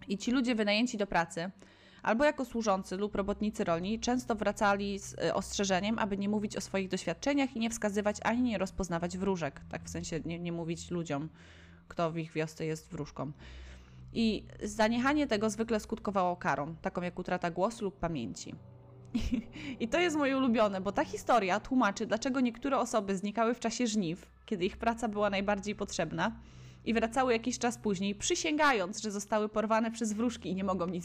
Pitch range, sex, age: 170-230 Hz, female, 20-39